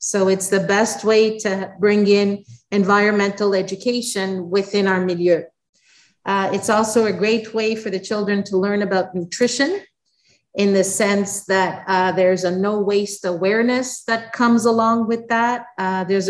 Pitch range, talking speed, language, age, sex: 190-225 Hz, 160 wpm, English, 40-59, female